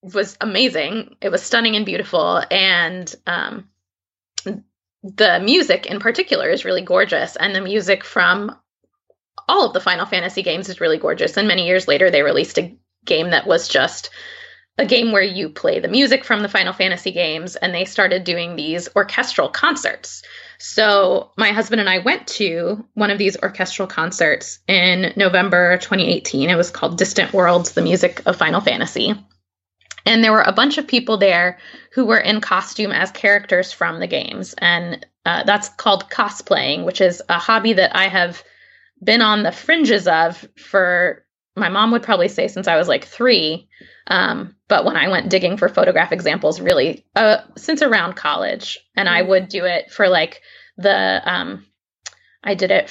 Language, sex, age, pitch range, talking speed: English, female, 20-39, 180-235 Hz, 175 wpm